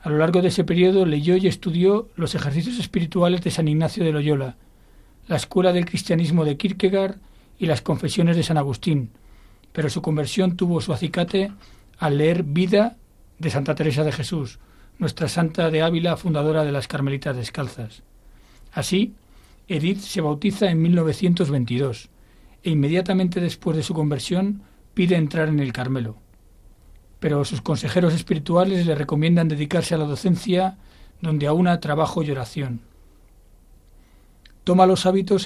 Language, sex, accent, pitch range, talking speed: Spanish, male, Spanish, 140-180 Hz, 145 wpm